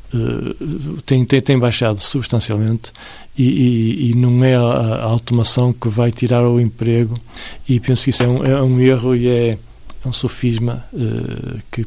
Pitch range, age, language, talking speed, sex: 115-130 Hz, 50-69, Portuguese, 175 wpm, male